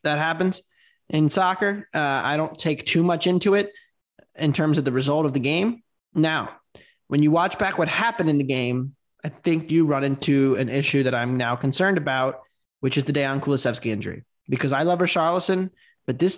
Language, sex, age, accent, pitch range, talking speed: English, male, 20-39, American, 140-185 Hz, 200 wpm